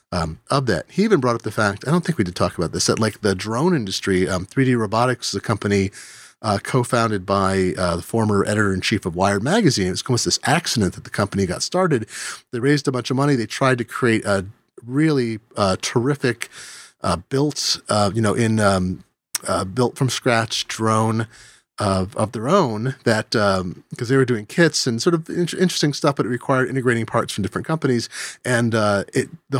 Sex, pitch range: male, 100-130 Hz